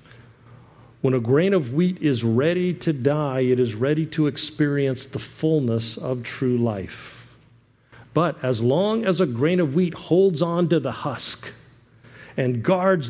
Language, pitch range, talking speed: English, 120-165 Hz, 155 wpm